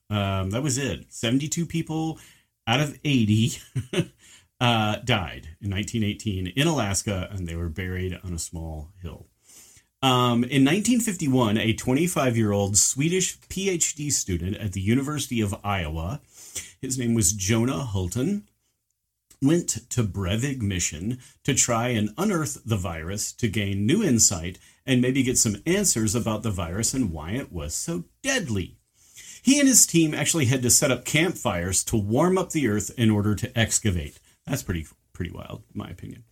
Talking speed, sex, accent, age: 155 wpm, male, American, 40-59